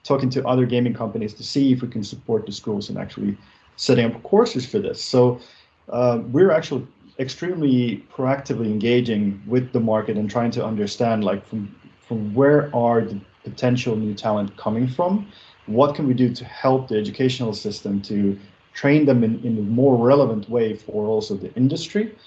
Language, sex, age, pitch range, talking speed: English, male, 30-49, 110-130 Hz, 180 wpm